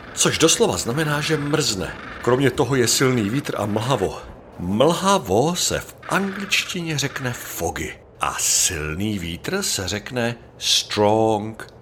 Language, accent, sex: Czech, native, male